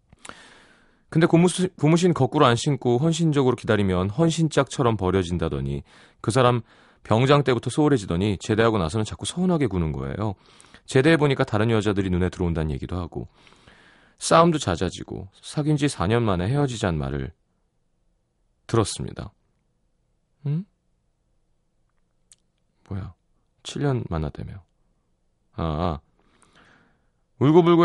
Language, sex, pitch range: Korean, male, 90-140 Hz